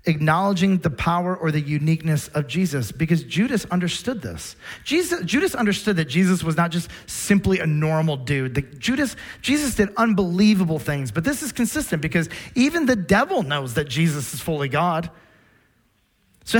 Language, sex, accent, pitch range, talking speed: English, male, American, 150-190 Hz, 150 wpm